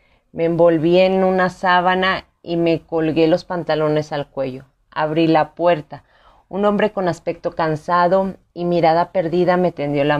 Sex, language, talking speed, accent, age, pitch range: female, Spanish, 155 wpm, Mexican, 30-49, 155-185 Hz